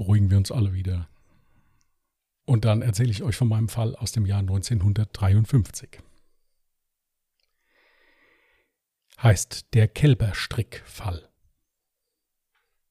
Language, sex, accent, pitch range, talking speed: German, male, German, 110-155 Hz, 95 wpm